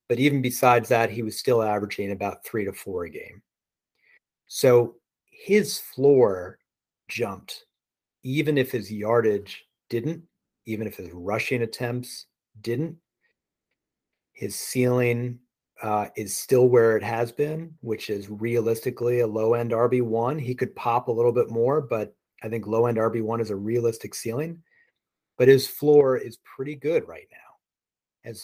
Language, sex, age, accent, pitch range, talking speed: English, male, 40-59, American, 110-135 Hz, 145 wpm